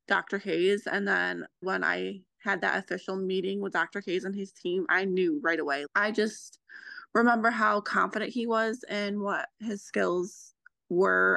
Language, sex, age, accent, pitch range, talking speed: English, female, 20-39, American, 155-205 Hz, 170 wpm